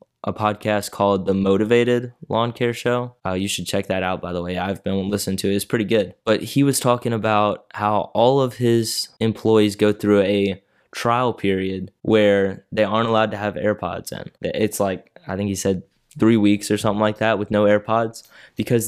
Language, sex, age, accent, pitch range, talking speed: English, male, 20-39, American, 95-110 Hz, 205 wpm